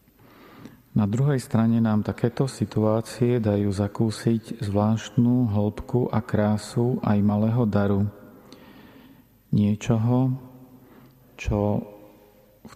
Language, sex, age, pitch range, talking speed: Slovak, male, 40-59, 105-115 Hz, 85 wpm